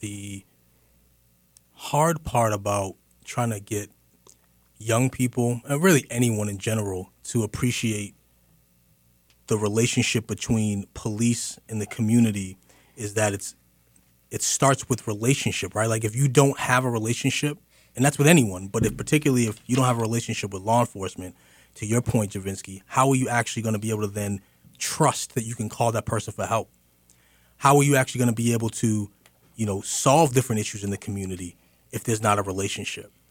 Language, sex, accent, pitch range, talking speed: English, male, American, 95-120 Hz, 180 wpm